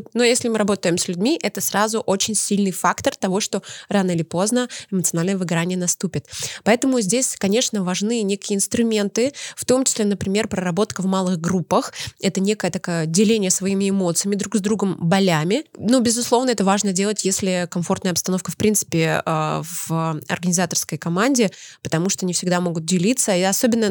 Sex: female